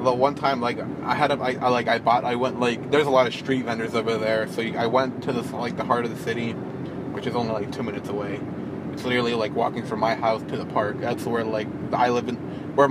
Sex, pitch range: male, 120-140 Hz